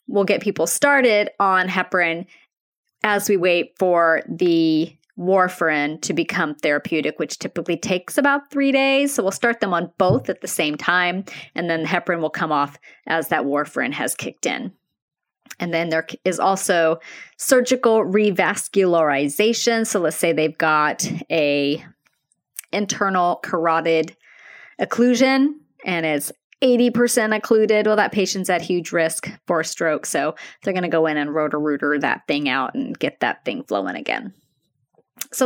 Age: 30-49